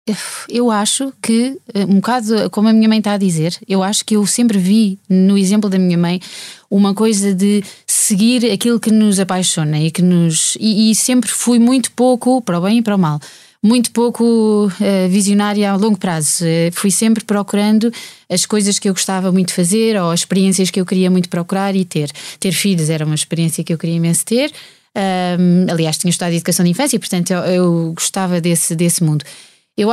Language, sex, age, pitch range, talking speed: Portuguese, female, 20-39, 175-210 Hz, 195 wpm